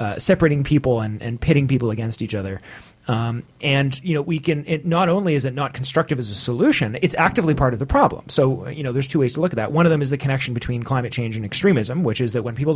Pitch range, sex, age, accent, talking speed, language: 120-145 Hz, male, 30-49, American, 275 wpm, English